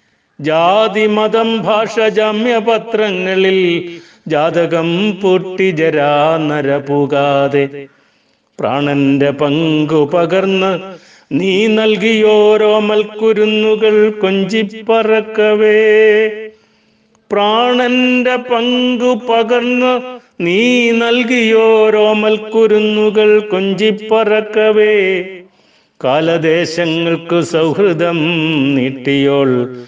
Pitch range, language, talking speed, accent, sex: 160-220 Hz, Malayalam, 50 wpm, native, male